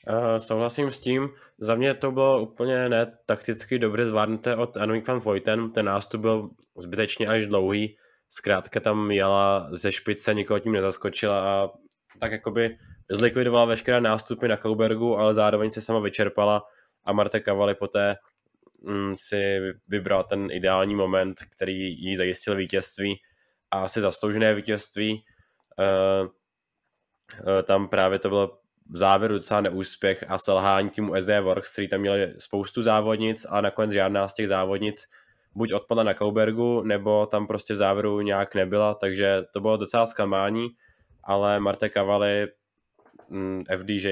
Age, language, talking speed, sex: 20-39, Czech, 145 wpm, male